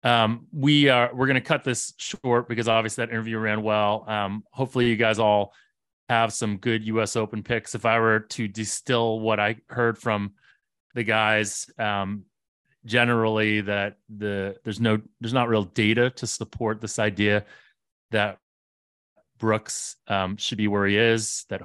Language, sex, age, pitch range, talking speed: English, male, 30-49, 100-115 Hz, 165 wpm